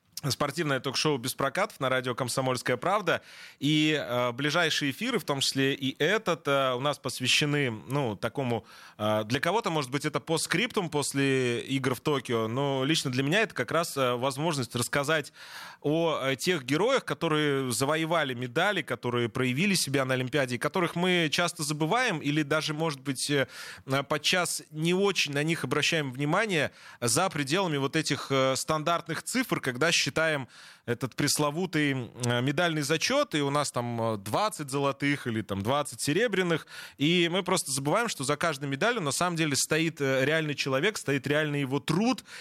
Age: 20-39